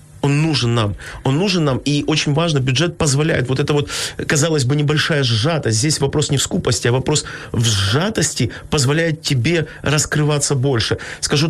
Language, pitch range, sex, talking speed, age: Ukrainian, 120-150 Hz, male, 165 wpm, 30-49